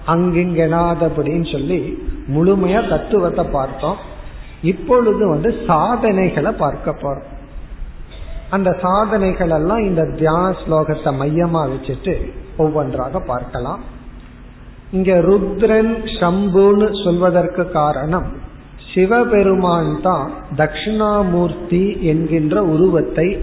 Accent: native